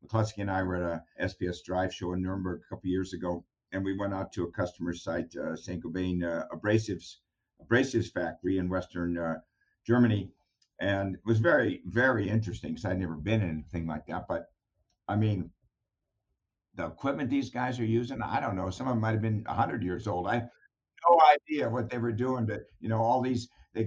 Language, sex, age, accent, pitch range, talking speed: English, male, 60-79, American, 95-120 Hz, 205 wpm